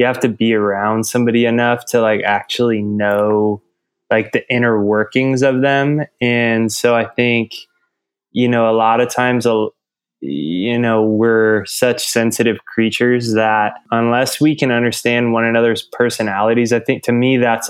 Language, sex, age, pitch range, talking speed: English, male, 20-39, 110-125 Hz, 160 wpm